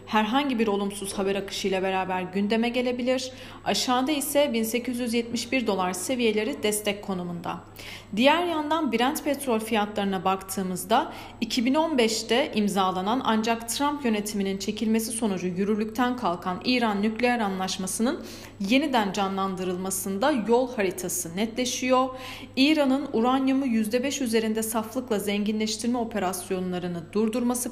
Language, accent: Turkish, native